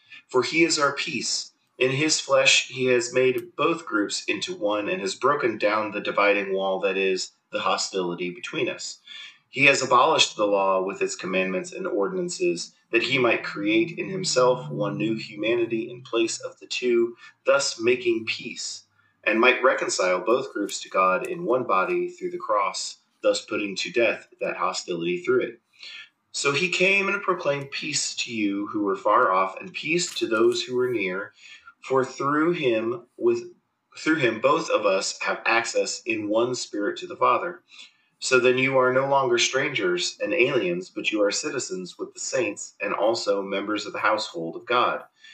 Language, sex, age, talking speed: English, male, 30-49, 180 wpm